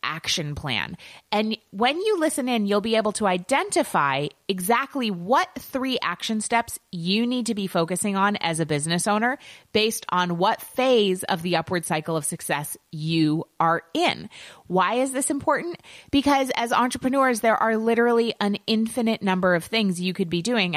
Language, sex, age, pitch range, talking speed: English, female, 30-49, 160-225 Hz, 170 wpm